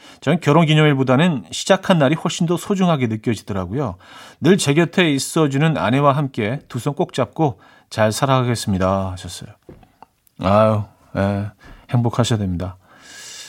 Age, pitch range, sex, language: 40-59, 105-160 Hz, male, Korean